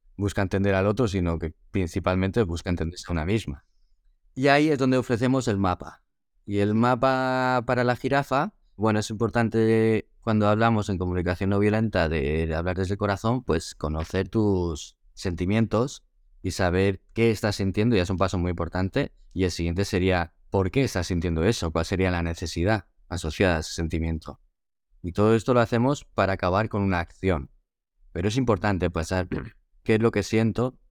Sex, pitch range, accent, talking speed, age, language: male, 90-115 Hz, Spanish, 175 wpm, 20-39, Spanish